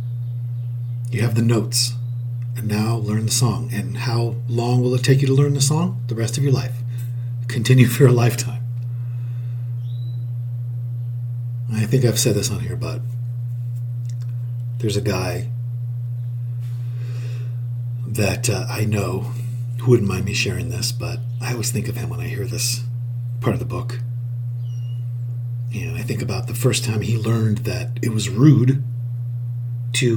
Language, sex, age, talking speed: English, male, 40-59, 155 wpm